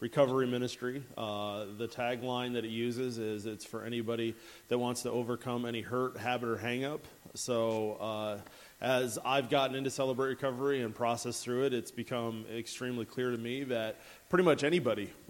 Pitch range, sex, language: 110-125 Hz, male, English